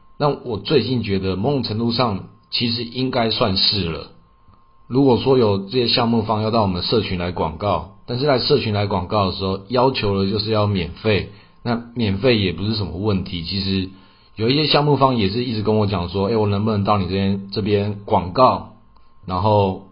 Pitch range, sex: 95-110 Hz, male